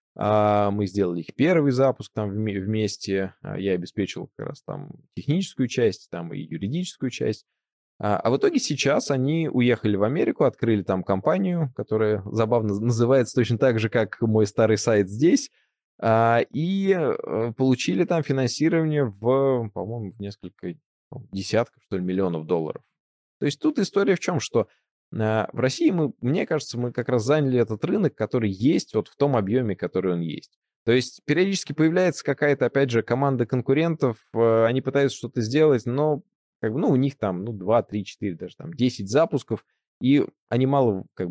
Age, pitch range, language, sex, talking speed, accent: 20-39, 105-150 Hz, Russian, male, 160 wpm, native